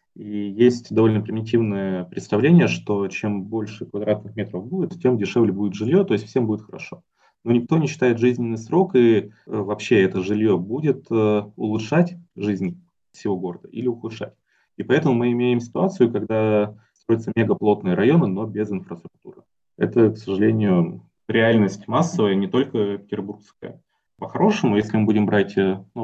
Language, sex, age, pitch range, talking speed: Russian, male, 20-39, 105-120 Hz, 145 wpm